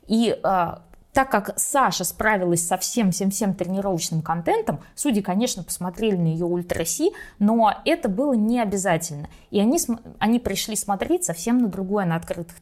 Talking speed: 150 wpm